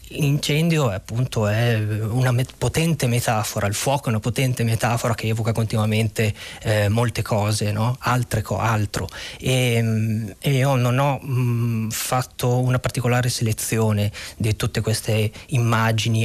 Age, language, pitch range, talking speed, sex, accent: 20-39, Italian, 110-130 Hz, 125 wpm, male, native